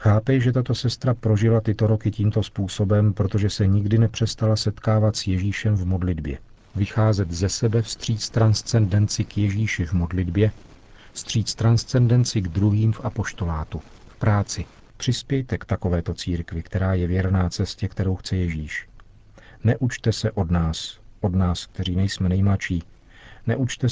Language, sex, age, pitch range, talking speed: Czech, male, 50-69, 95-110 Hz, 140 wpm